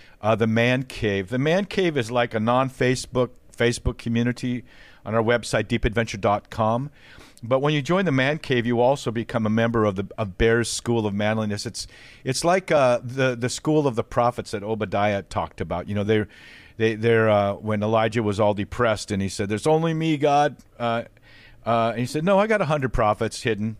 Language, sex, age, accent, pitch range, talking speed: English, male, 50-69, American, 105-130 Hz, 210 wpm